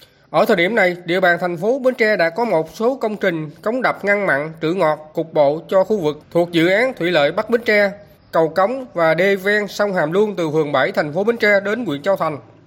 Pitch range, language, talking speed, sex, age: 160-220 Hz, Vietnamese, 255 wpm, male, 20-39